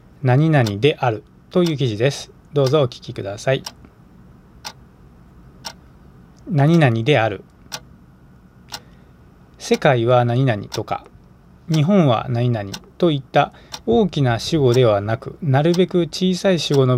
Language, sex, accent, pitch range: Japanese, male, native, 115-160 Hz